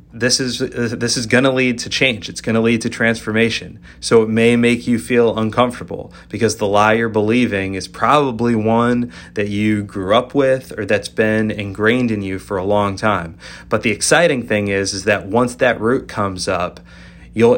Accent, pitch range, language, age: American, 95-115 Hz, English, 30-49